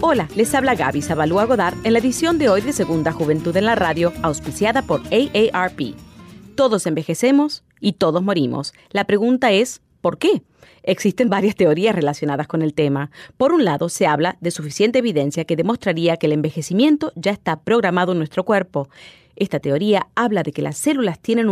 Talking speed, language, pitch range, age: 180 wpm, Spanish, 160-235 Hz, 30-49